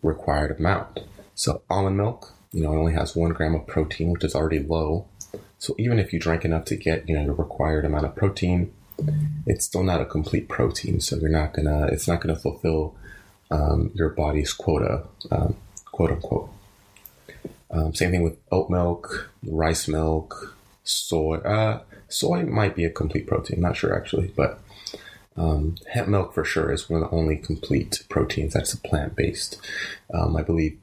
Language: English